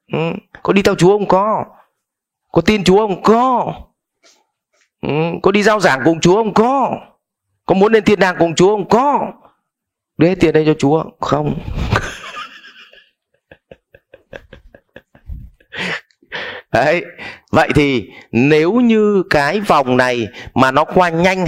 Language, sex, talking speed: Vietnamese, male, 135 wpm